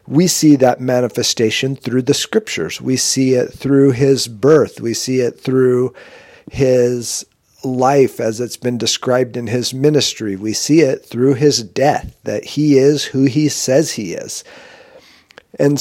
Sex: male